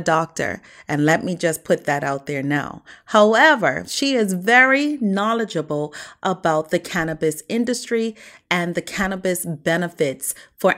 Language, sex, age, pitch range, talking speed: English, female, 30-49, 160-225 Hz, 135 wpm